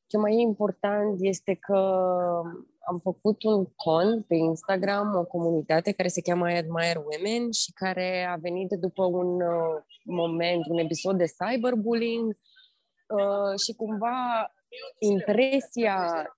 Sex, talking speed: female, 120 wpm